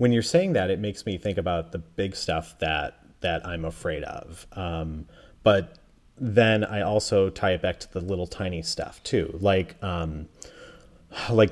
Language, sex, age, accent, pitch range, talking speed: English, male, 30-49, American, 85-110 Hz, 175 wpm